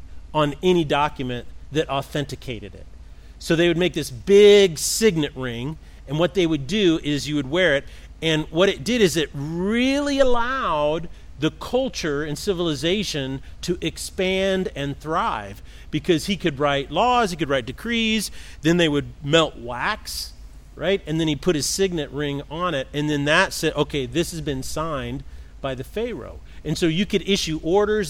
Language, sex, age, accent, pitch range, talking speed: English, male, 40-59, American, 135-180 Hz, 175 wpm